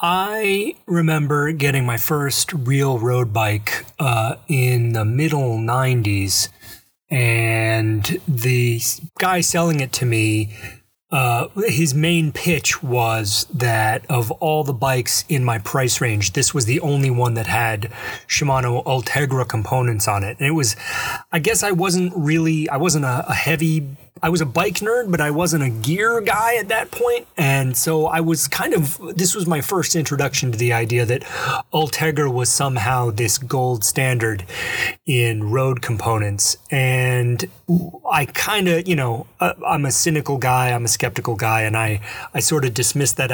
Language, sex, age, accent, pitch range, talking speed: English, male, 30-49, American, 115-155 Hz, 165 wpm